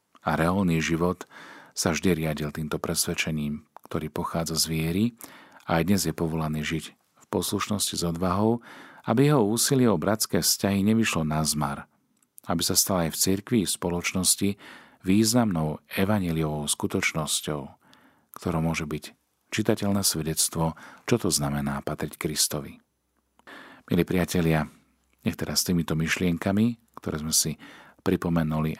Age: 40-59